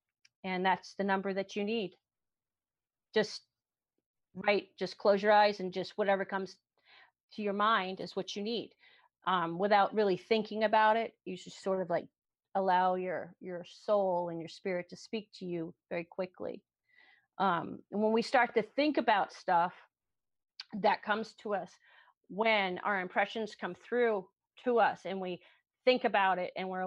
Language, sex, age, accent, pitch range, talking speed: English, female, 40-59, American, 185-220 Hz, 170 wpm